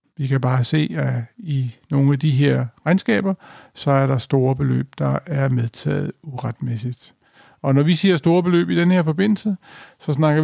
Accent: native